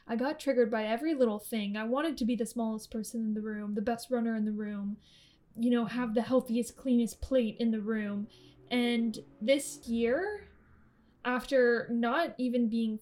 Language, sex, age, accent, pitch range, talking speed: English, female, 10-29, American, 225-265 Hz, 185 wpm